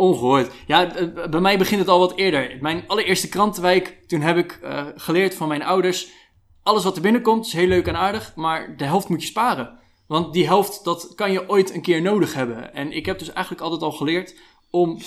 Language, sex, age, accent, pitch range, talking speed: Dutch, male, 20-39, Dutch, 145-185 Hz, 220 wpm